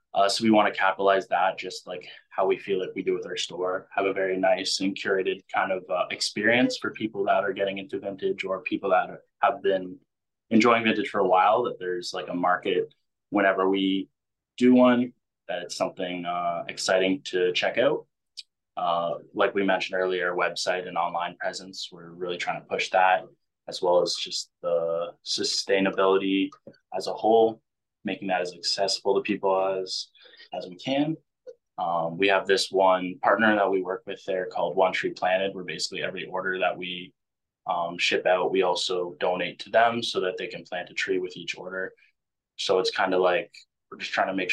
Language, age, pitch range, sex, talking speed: English, 20-39, 90-115 Hz, male, 195 wpm